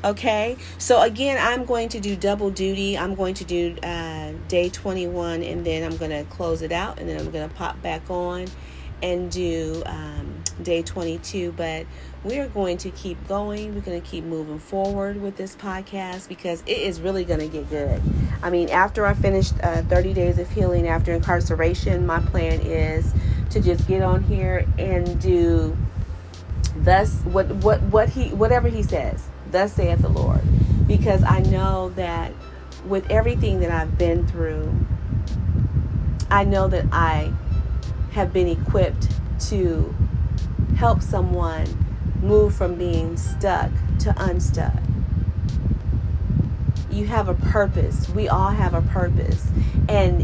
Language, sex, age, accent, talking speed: English, female, 40-59, American, 155 wpm